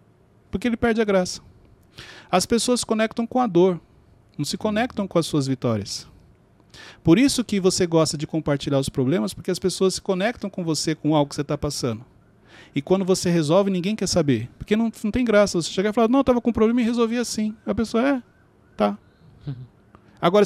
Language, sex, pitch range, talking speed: Portuguese, male, 135-195 Hz, 205 wpm